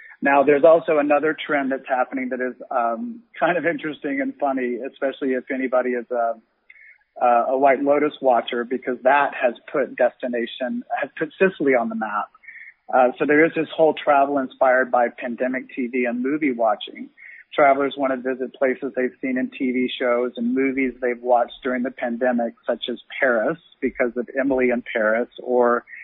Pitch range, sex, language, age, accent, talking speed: 125-150 Hz, male, English, 40-59, American, 175 wpm